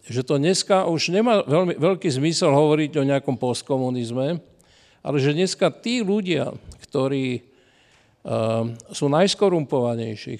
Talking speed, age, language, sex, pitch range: 120 wpm, 50-69, Slovak, male, 130-175 Hz